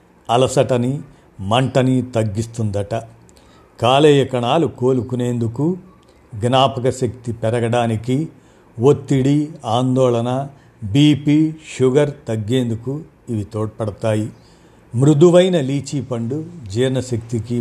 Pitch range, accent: 115-140 Hz, native